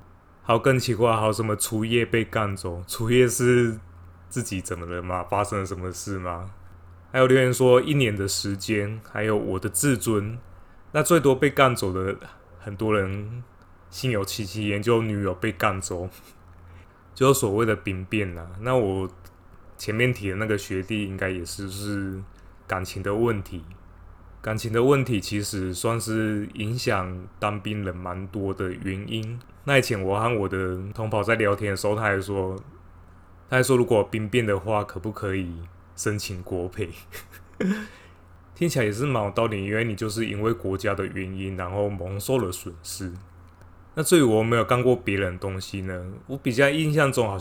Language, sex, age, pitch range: Chinese, male, 20-39, 90-115 Hz